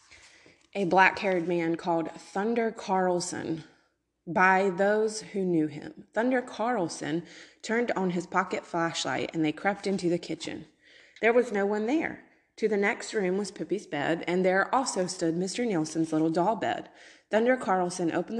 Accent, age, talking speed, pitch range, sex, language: American, 20-39, 155 wpm, 165-215 Hz, female, English